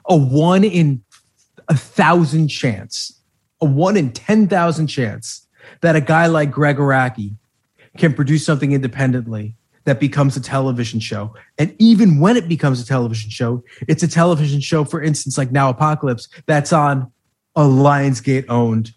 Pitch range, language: 130-170 Hz, English